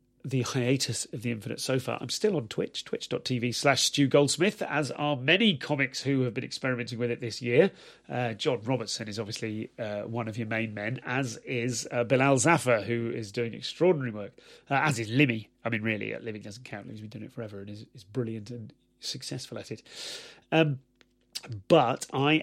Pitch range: 115-135 Hz